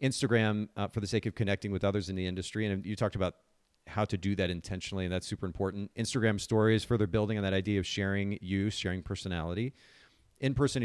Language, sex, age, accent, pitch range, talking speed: English, male, 40-59, American, 95-115 Hz, 210 wpm